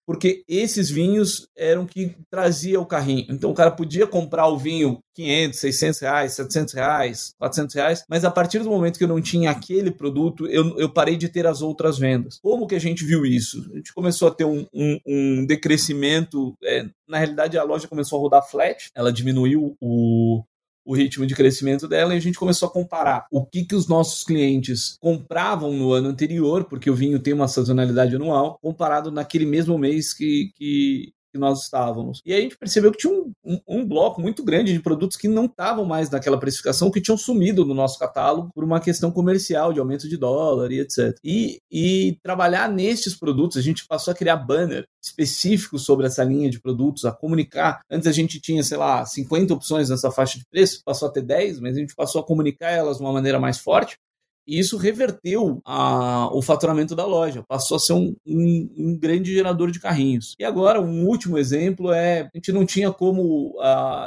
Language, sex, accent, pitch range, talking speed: Portuguese, male, Brazilian, 140-180 Hz, 205 wpm